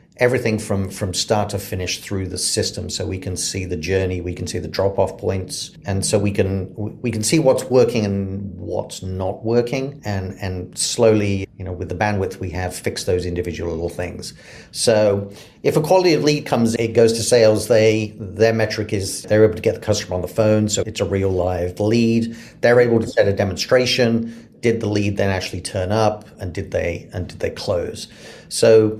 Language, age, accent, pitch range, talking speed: English, 40-59, British, 90-110 Hz, 210 wpm